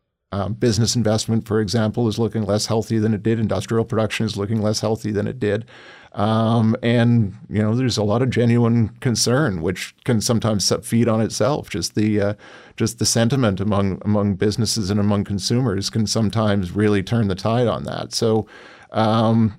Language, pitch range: English, 100-115 Hz